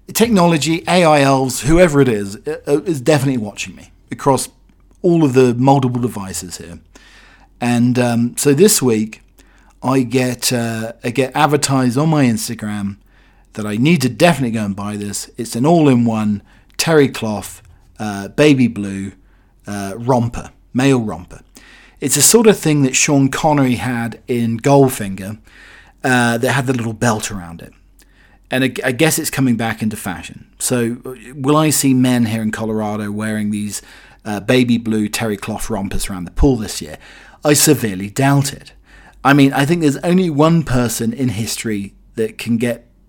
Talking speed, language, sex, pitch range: 165 wpm, English, male, 105-135 Hz